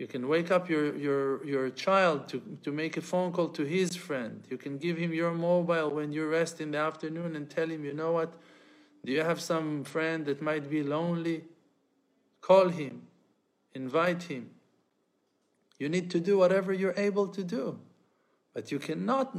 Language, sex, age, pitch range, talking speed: English, male, 50-69, 140-170 Hz, 185 wpm